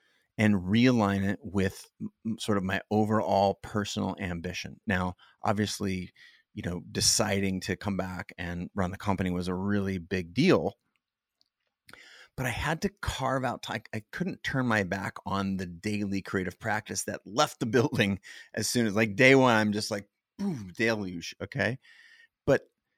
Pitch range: 100-120 Hz